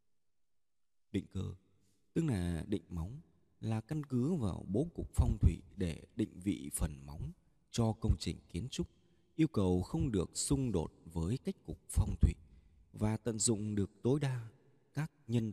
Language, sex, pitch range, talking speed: Vietnamese, male, 85-125 Hz, 165 wpm